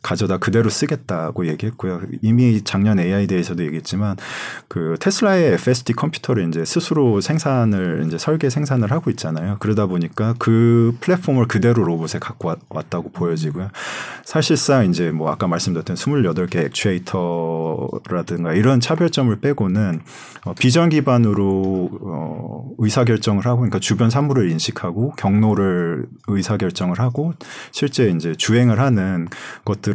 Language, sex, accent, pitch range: Korean, male, native, 85-125 Hz